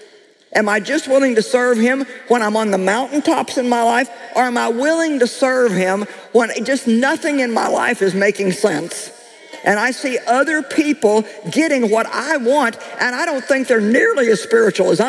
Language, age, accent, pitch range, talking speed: English, 50-69, American, 210-330 Hz, 195 wpm